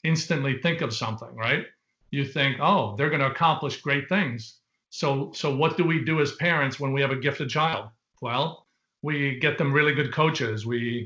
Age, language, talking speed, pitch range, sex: 40-59, English, 195 wpm, 130-160 Hz, male